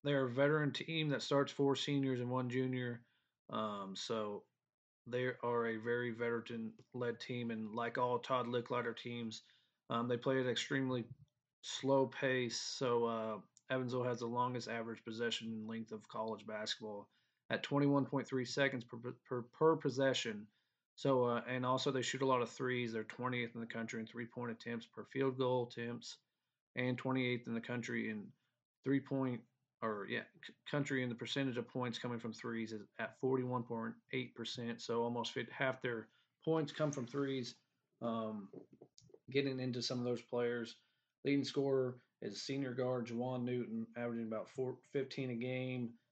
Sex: male